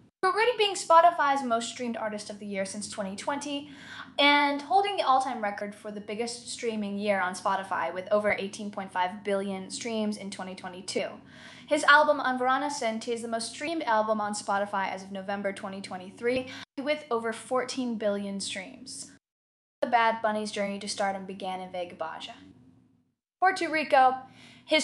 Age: 10-29